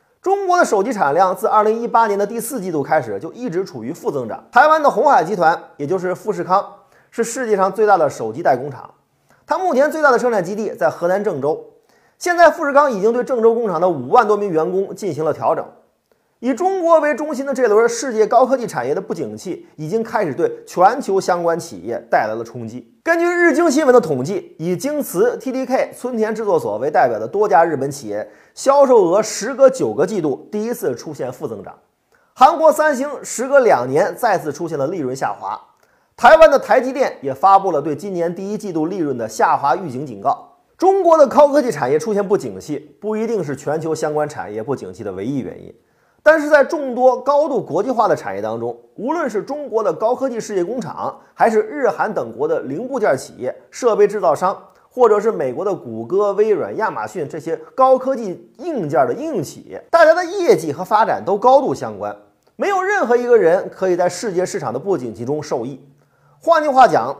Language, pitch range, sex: Chinese, 195-315 Hz, male